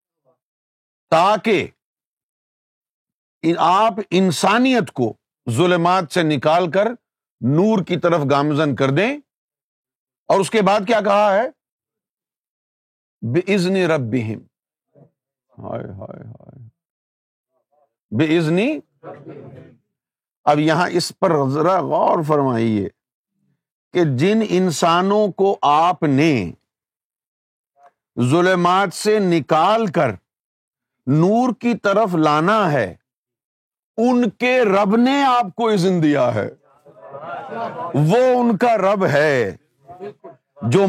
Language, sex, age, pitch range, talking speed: Urdu, male, 50-69, 140-210 Hz, 90 wpm